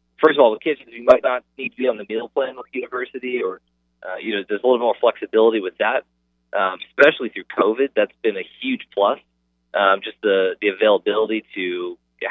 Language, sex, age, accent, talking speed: English, male, 30-49, American, 210 wpm